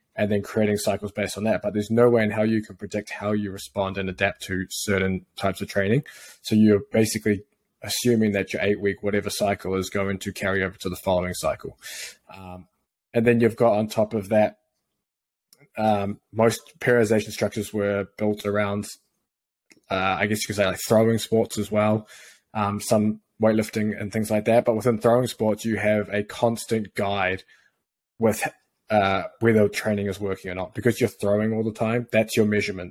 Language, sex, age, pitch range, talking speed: English, male, 20-39, 100-110 Hz, 190 wpm